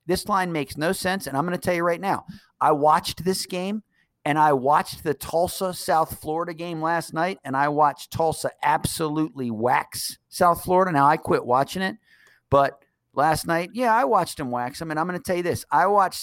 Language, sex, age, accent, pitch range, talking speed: English, male, 50-69, American, 130-185 Hz, 220 wpm